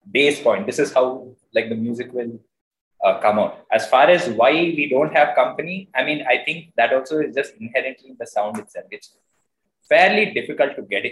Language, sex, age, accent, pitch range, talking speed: English, male, 20-39, Indian, 120-155 Hz, 200 wpm